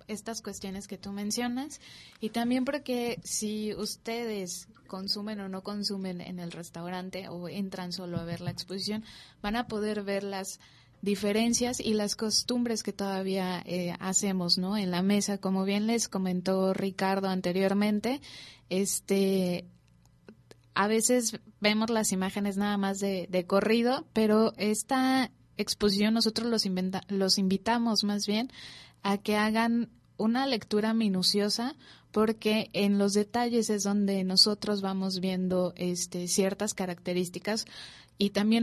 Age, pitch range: 20-39, 185-215 Hz